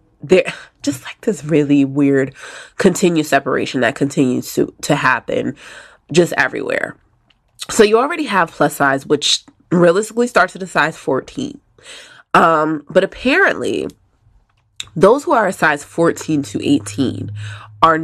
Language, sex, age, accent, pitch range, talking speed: English, female, 20-39, American, 140-185 Hz, 135 wpm